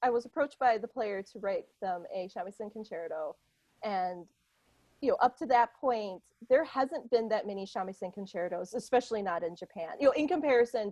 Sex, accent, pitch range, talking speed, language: female, American, 200-255 Hz, 185 wpm, English